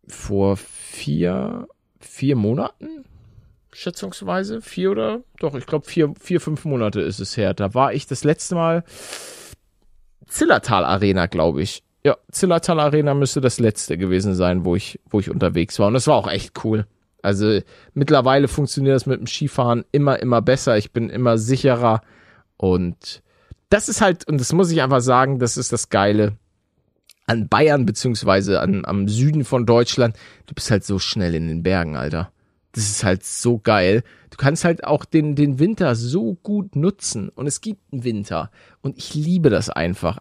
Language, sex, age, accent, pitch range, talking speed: German, male, 40-59, German, 110-165 Hz, 175 wpm